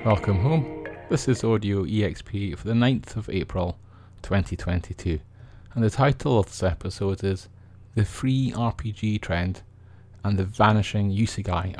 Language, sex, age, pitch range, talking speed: English, male, 30-49, 95-115 Hz, 135 wpm